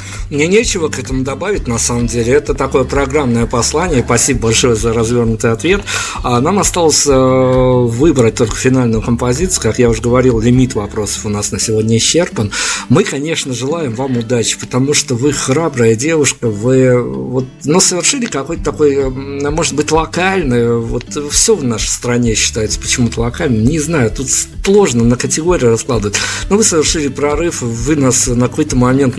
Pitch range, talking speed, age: 115-145 Hz, 155 wpm, 50-69